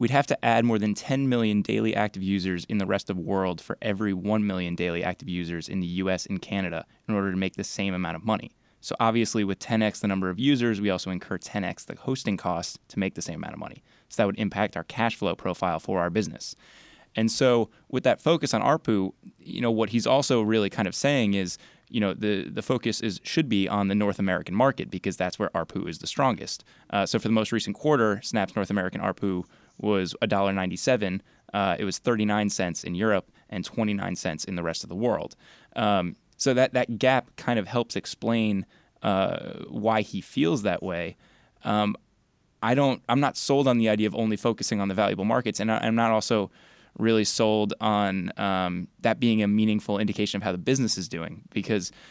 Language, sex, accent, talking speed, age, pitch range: English, male, American, 220 wpm, 20-39, 95-115 Hz